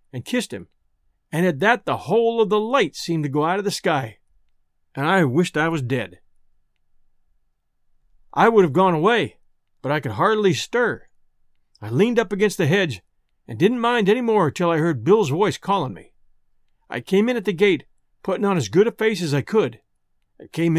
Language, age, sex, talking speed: English, 50-69, male, 200 wpm